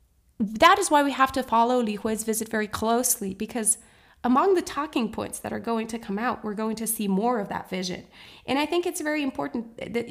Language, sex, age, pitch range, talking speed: English, female, 20-39, 195-255 Hz, 225 wpm